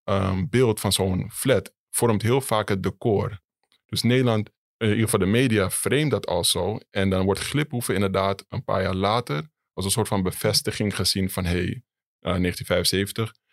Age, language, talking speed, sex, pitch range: 20-39, Dutch, 180 wpm, male, 95-115 Hz